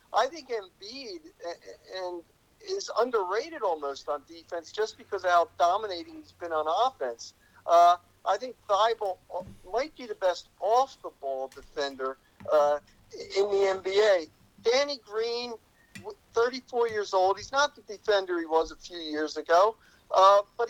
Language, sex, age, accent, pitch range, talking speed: English, male, 50-69, American, 175-285 Hz, 140 wpm